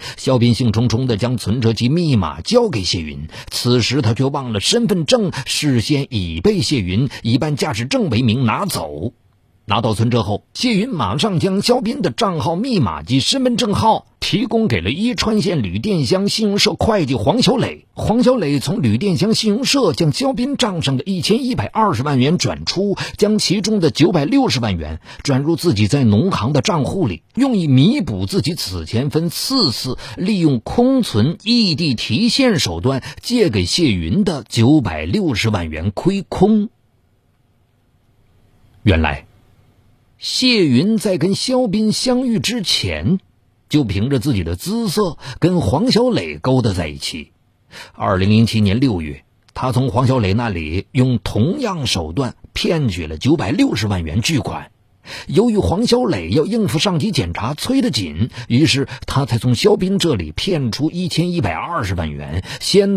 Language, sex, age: Chinese, male, 50-69